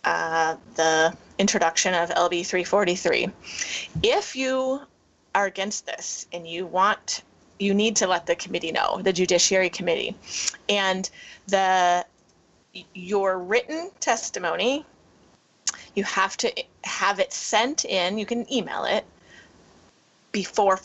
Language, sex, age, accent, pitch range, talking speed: English, female, 30-49, American, 180-215 Hz, 120 wpm